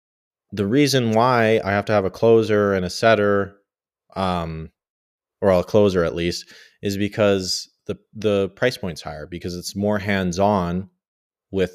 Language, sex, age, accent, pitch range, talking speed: English, male, 30-49, American, 90-105 Hz, 160 wpm